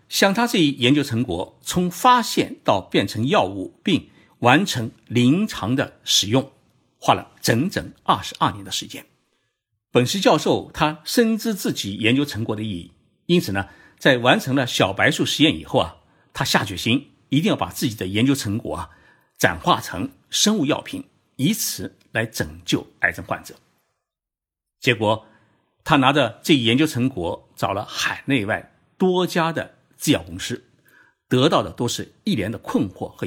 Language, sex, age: Chinese, male, 50-69